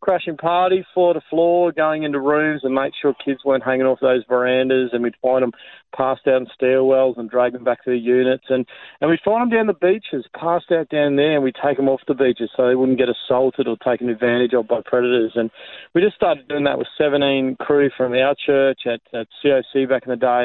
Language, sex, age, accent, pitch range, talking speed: English, male, 30-49, Australian, 125-140 Hz, 235 wpm